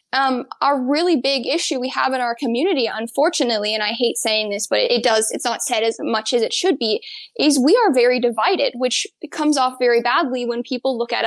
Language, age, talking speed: English, 10-29, 225 wpm